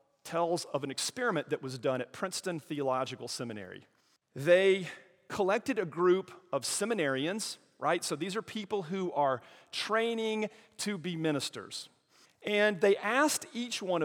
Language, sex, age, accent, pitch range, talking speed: English, male, 40-59, American, 140-195 Hz, 140 wpm